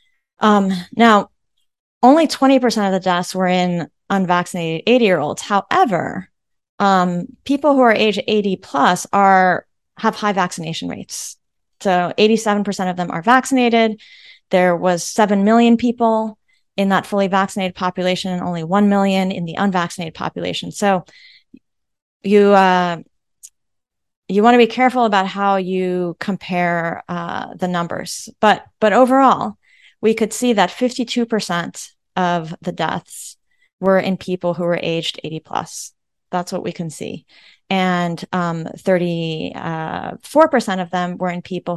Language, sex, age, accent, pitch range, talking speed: English, female, 30-49, American, 175-225 Hz, 135 wpm